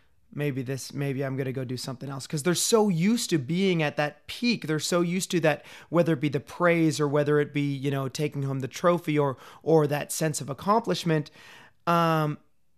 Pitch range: 135-160 Hz